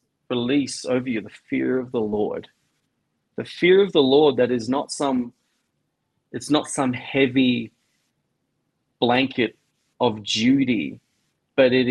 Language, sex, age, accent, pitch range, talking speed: English, male, 30-49, Australian, 115-140 Hz, 130 wpm